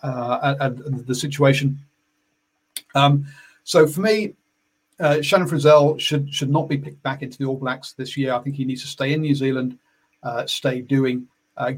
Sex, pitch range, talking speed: male, 125-145 Hz, 185 wpm